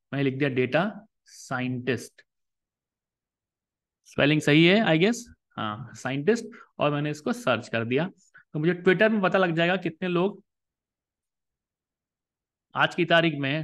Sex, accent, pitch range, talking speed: male, native, 145-200 Hz, 130 wpm